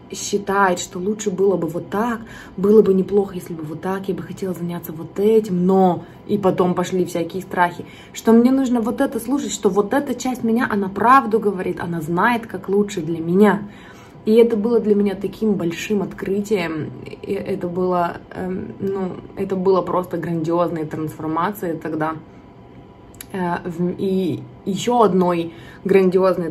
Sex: female